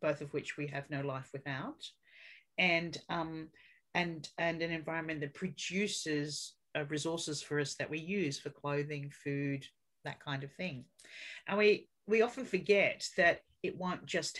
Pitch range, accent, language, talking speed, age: 145-170 Hz, Australian, English, 160 wpm, 40-59